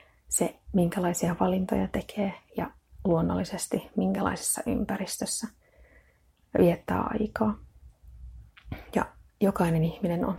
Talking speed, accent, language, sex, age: 80 wpm, native, Finnish, female, 30-49